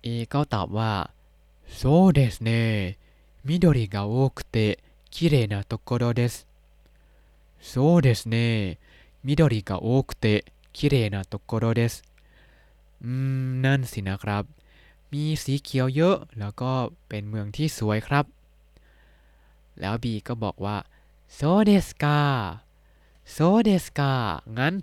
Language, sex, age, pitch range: Thai, male, 20-39, 95-135 Hz